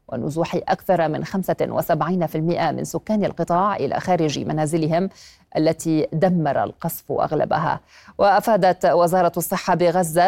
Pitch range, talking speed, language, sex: 165-190 Hz, 105 wpm, Arabic, female